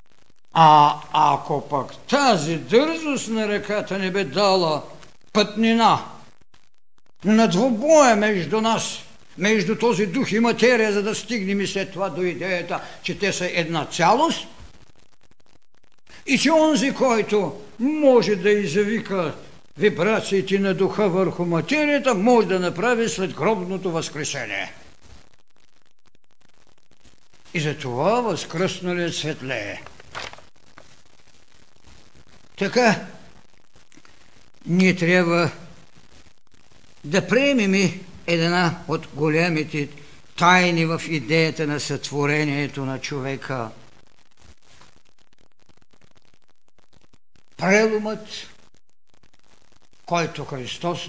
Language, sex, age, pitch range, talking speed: Bulgarian, male, 60-79, 155-210 Hz, 90 wpm